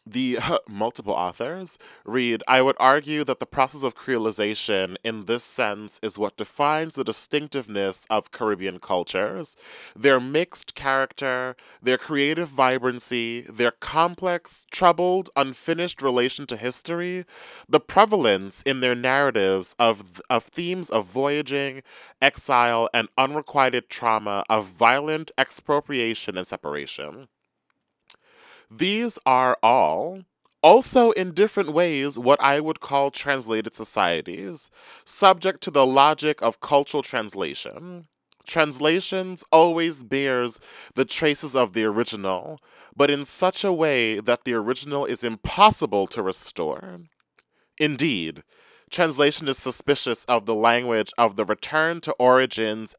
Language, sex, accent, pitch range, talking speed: English, male, American, 115-155 Hz, 120 wpm